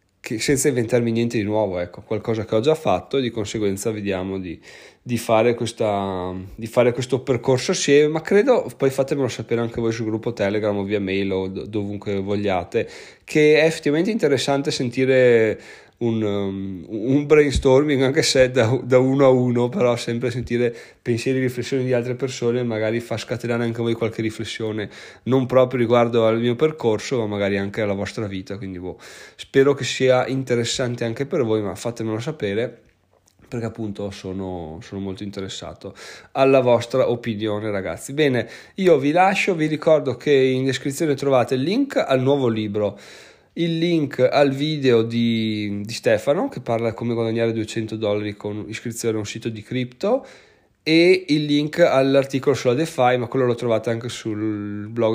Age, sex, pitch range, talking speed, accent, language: 20-39, male, 110-135 Hz, 170 wpm, native, Italian